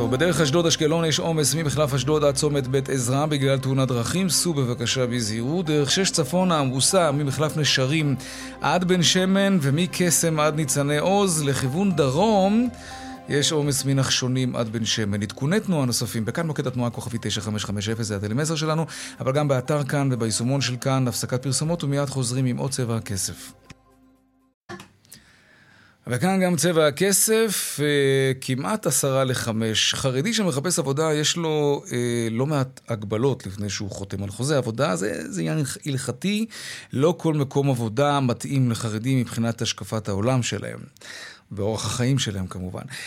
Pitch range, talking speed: 120-160 Hz, 140 wpm